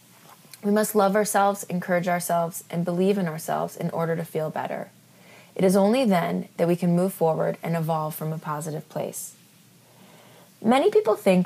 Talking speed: 175 wpm